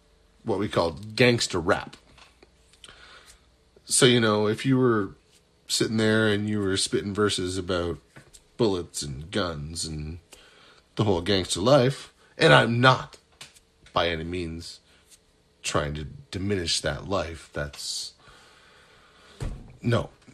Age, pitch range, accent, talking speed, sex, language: 30-49, 85-120 Hz, American, 120 wpm, male, English